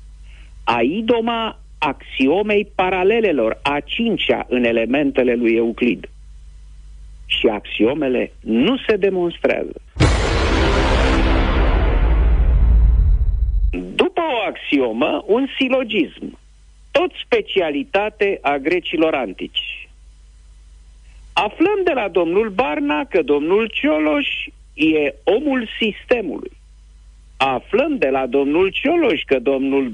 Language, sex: Romanian, male